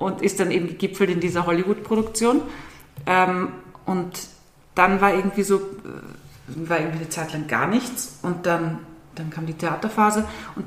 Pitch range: 160-195 Hz